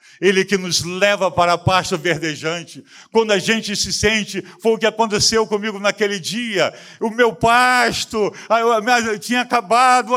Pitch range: 160-220 Hz